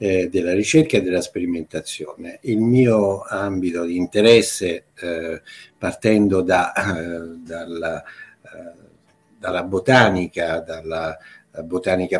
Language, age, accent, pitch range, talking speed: Italian, 60-79, native, 95-125 Hz, 90 wpm